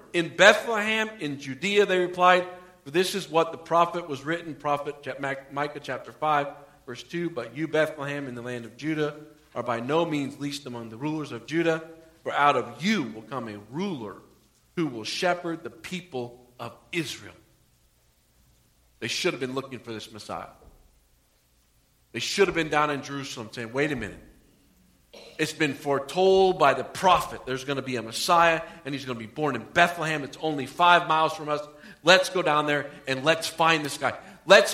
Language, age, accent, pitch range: English, 40-59, American, 120-160 Hz